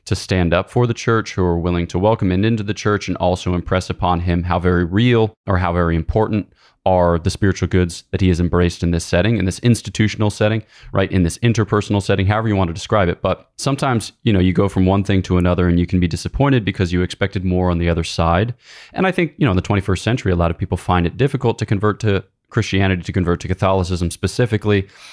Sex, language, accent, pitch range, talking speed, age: male, English, American, 90-105 Hz, 245 wpm, 20-39